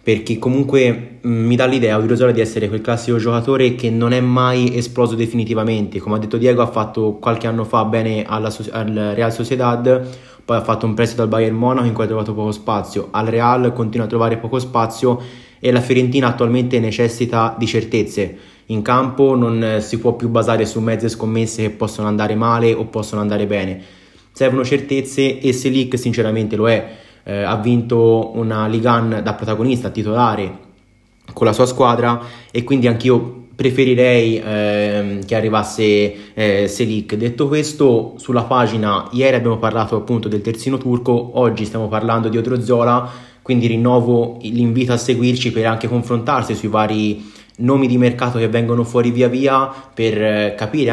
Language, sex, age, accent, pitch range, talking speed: Italian, male, 20-39, native, 110-125 Hz, 170 wpm